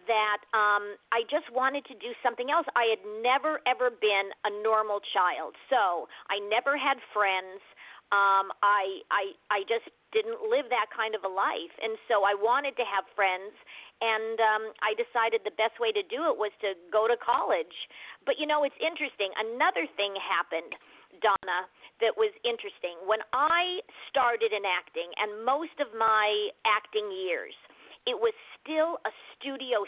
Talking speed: 170 wpm